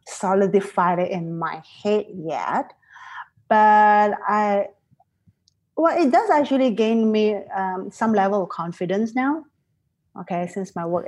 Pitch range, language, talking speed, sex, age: 195-250 Hz, English, 130 wpm, female, 30-49